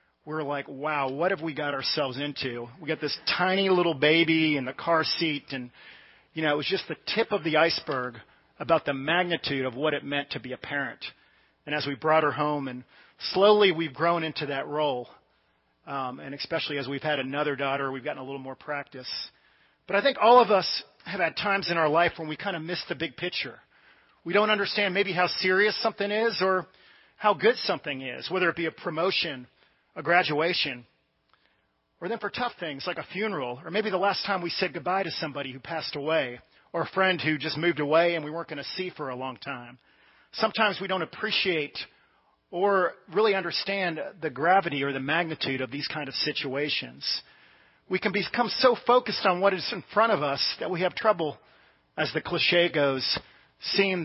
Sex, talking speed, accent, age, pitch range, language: male, 205 wpm, American, 40-59, 140-185 Hz, English